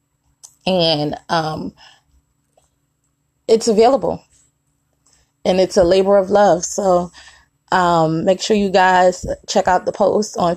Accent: American